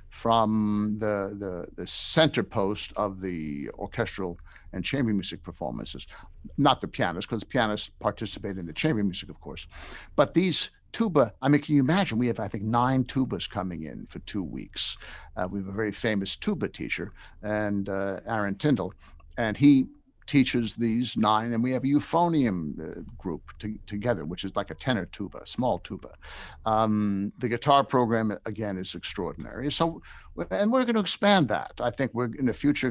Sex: male